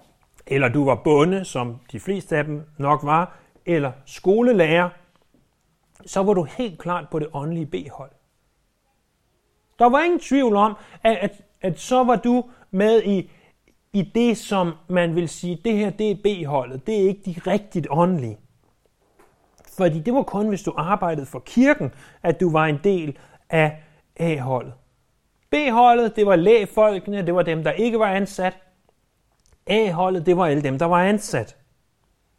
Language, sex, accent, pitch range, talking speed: Danish, male, native, 150-205 Hz, 160 wpm